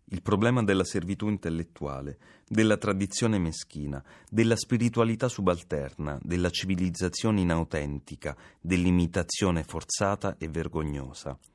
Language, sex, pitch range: Italian, male, 75-105 Hz